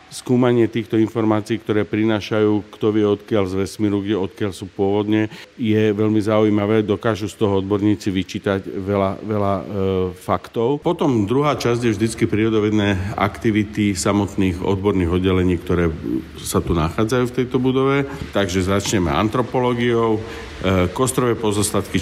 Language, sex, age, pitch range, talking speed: Slovak, male, 50-69, 95-110 Hz, 135 wpm